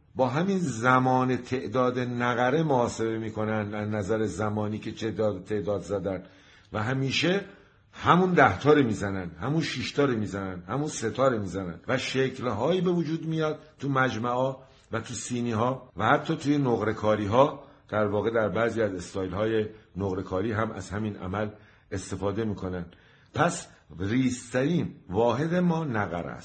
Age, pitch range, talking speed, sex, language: 50-69, 105-145 Hz, 140 wpm, male, Persian